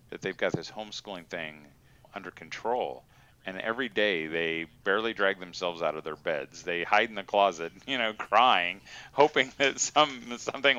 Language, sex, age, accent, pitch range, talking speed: English, male, 40-59, American, 95-130 Hz, 170 wpm